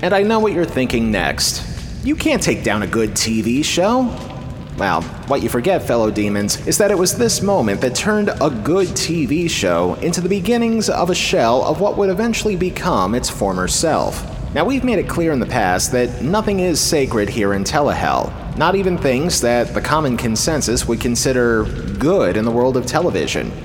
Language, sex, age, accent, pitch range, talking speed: English, male, 30-49, American, 120-195 Hz, 195 wpm